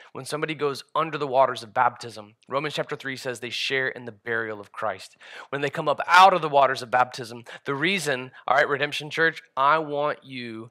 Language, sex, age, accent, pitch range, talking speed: English, male, 20-39, American, 135-225 Hz, 215 wpm